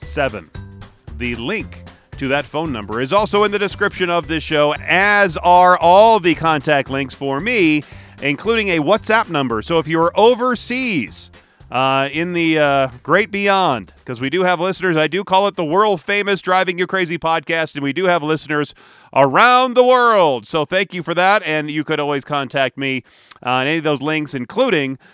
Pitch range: 145-200 Hz